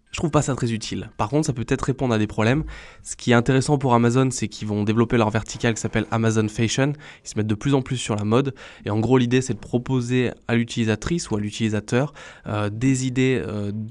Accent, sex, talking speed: French, male, 245 wpm